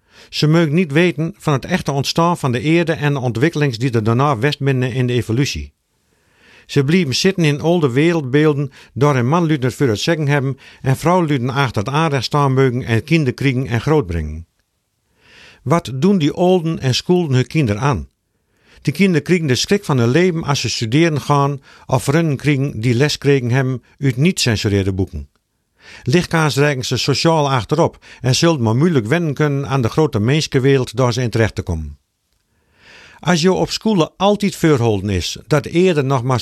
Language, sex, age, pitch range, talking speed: Dutch, male, 50-69, 115-160 Hz, 185 wpm